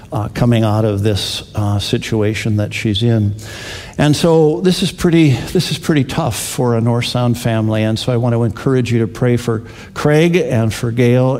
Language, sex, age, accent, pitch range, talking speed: English, male, 50-69, American, 115-145 Hz, 200 wpm